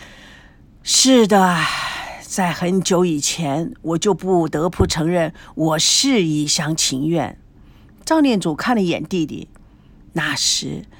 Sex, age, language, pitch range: female, 50-69, Chinese, 155-200 Hz